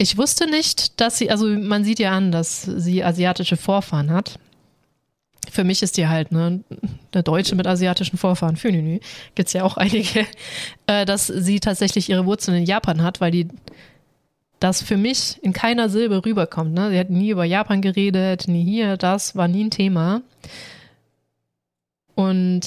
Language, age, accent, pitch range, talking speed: German, 20-39, German, 170-200 Hz, 170 wpm